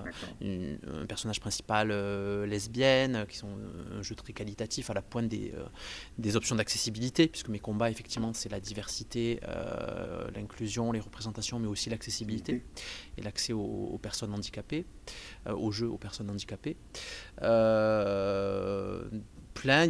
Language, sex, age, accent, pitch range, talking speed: French, male, 30-49, French, 105-125 Hz, 145 wpm